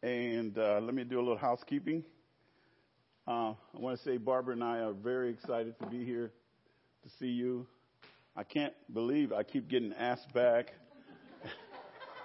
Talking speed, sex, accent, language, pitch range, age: 160 wpm, male, American, English, 110-145 Hz, 50-69